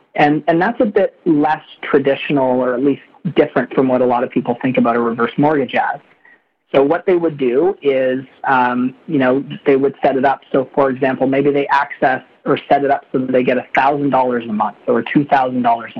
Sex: male